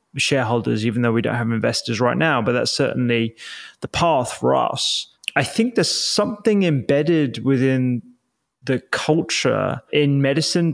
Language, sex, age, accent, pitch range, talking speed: English, male, 20-39, British, 120-145 Hz, 145 wpm